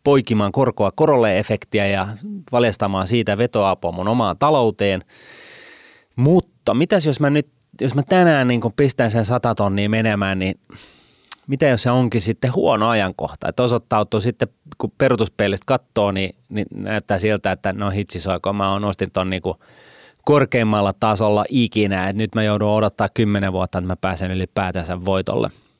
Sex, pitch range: male, 95-130 Hz